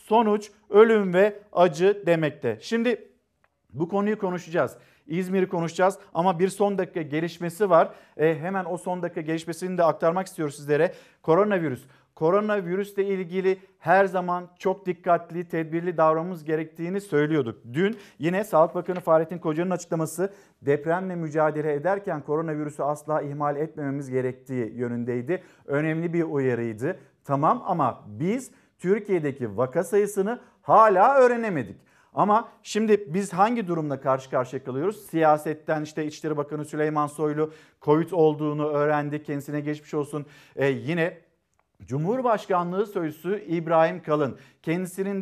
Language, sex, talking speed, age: Turkish, male, 120 wpm, 50-69